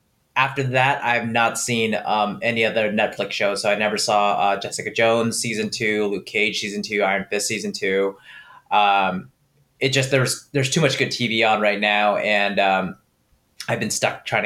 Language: English